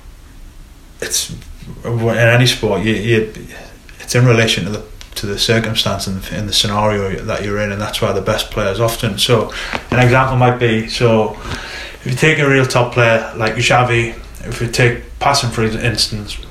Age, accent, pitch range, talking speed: 20-39, British, 105-120 Hz, 180 wpm